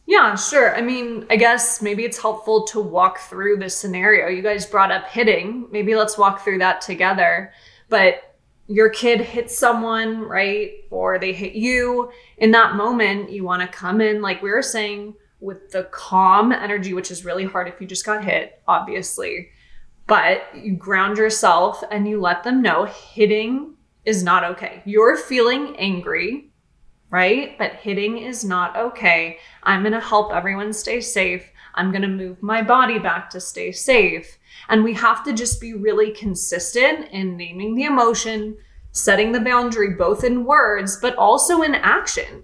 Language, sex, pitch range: English, female, 195-245 Hz